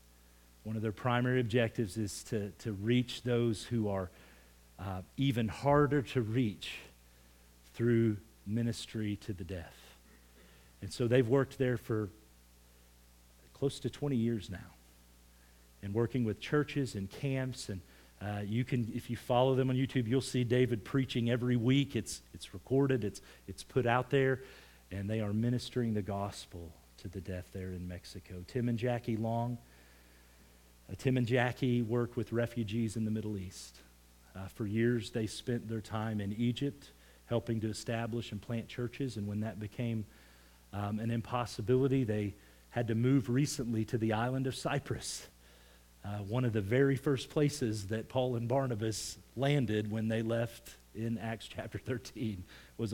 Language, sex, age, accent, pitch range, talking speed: English, male, 40-59, American, 95-125 Hz, 160 wpm